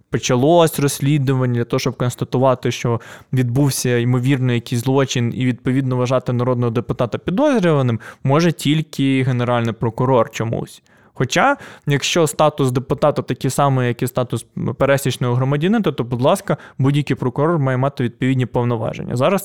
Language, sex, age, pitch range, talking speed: Ukrainian, male, 20-39, 125-155 Hz, 135 wpm